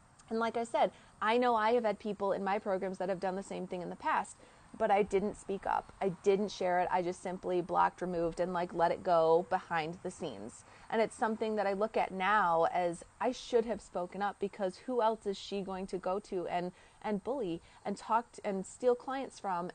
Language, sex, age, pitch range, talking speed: English, female, 30-49, 180-220 Hz, 230 wpm